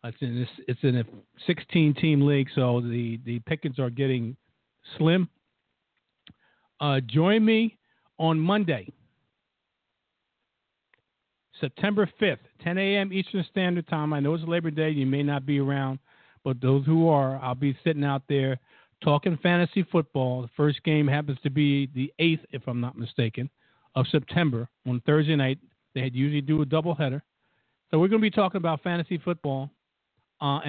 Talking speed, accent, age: 155 wpm, American, 50-69